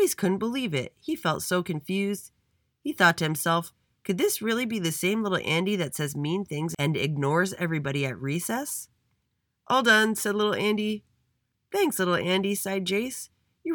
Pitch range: 140-200 Hz